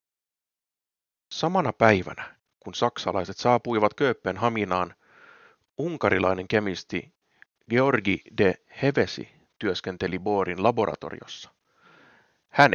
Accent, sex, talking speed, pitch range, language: native, male, 70 wpm, 95-120 Hz, Finnish